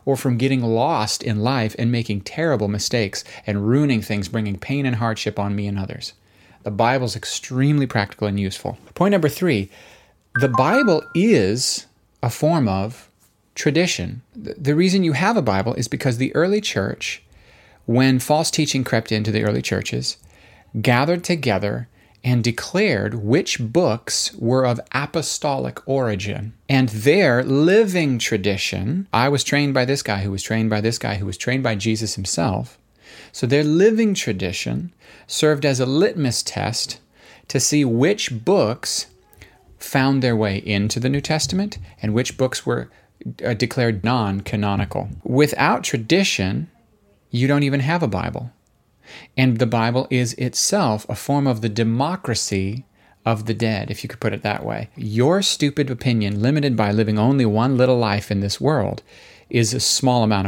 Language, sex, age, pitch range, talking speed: English, male, 30-49, 105-140 Hz, 160 wpm